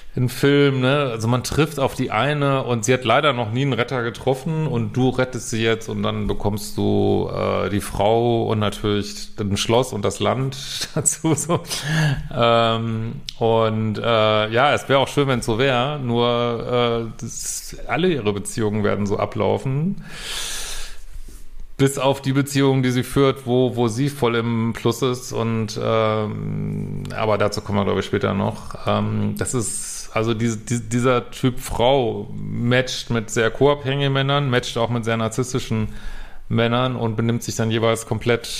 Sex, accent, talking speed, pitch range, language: male, German, 170 wpm, 110-135 Hz, German